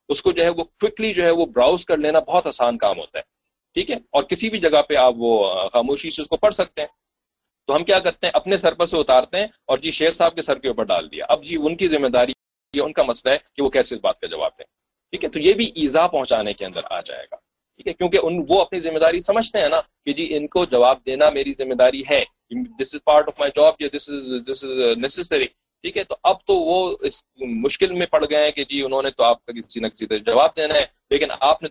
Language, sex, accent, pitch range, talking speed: English, male, Indian, 140-215 Hz, 230 wpm